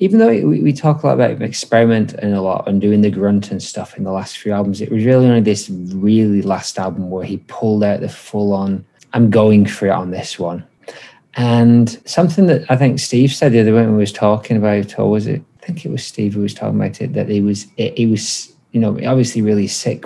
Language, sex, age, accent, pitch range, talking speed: English, male, 20-39, British, 100-125 Hz, 240 wpm